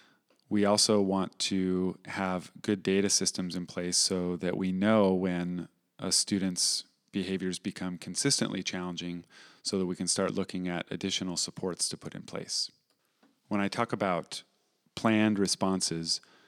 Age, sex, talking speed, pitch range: 30-49, male, 145 wpm, 90-100 Hz